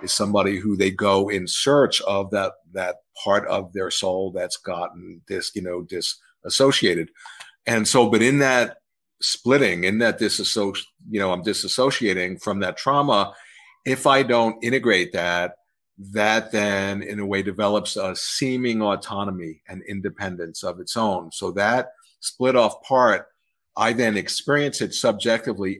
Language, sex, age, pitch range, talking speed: English, male, 50-69, 95-120 Hz, 150 wpm